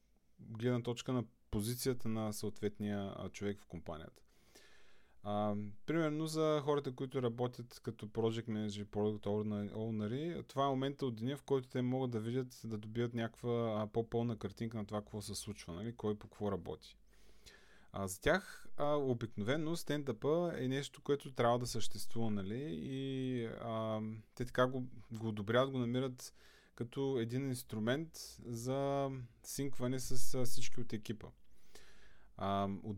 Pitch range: 105-135 Hz